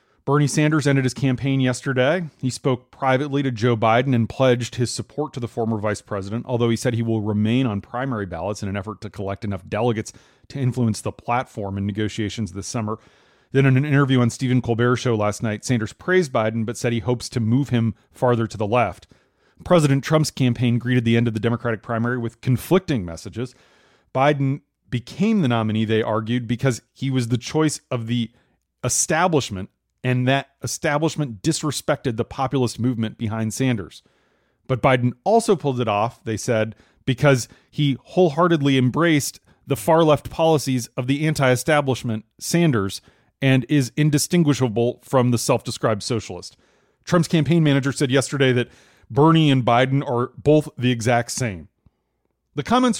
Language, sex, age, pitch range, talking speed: English, male, 30-49, 115-140 Hz, 165 wpm